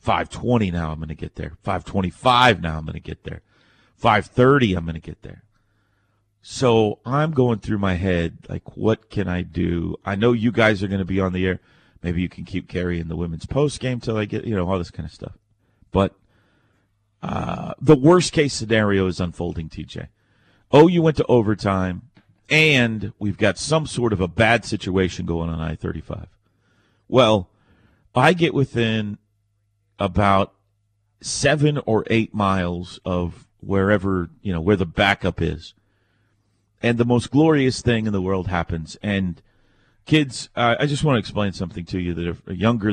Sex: male